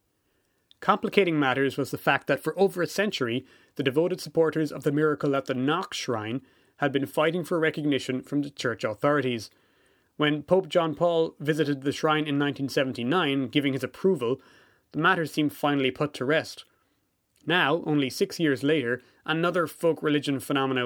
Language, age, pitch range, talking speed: English, 30-49, 130-160 Hz, 165 wpm